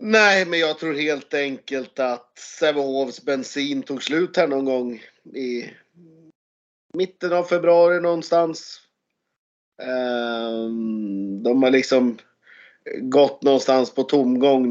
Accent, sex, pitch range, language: native, male, 110-135 Hz, Swedish